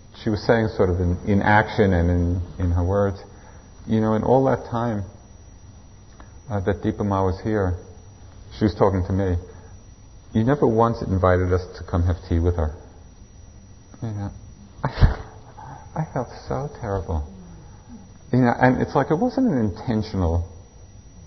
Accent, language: American, English